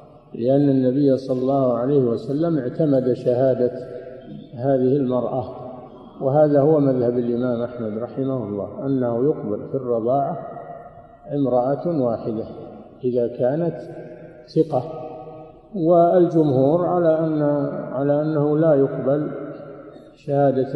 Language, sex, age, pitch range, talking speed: Arabic, male, 50-69, 125-145 Hz, 100 wpm